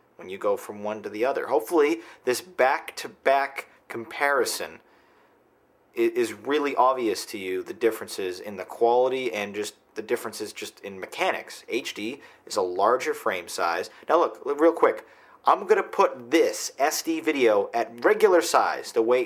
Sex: male